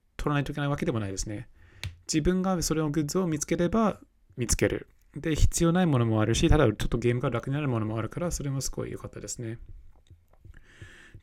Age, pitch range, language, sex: 20-39, 105-145 Hz, Japanese, male